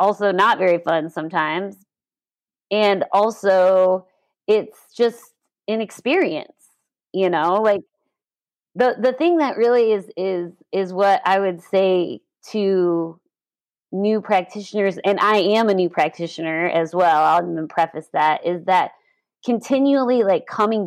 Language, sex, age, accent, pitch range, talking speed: English, female, 30-49, American, 180-225 Hz, 130 wpm